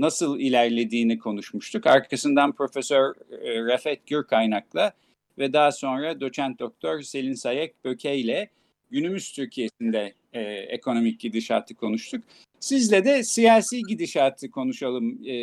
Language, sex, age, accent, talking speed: Turkish, male, 50-69, native, 100 wpm